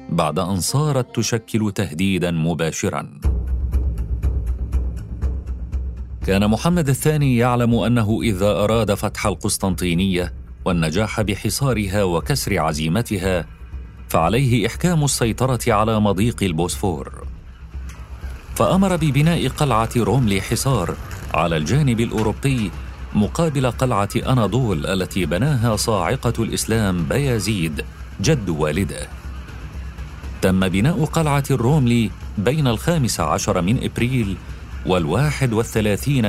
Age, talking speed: 40-59, 90 wpm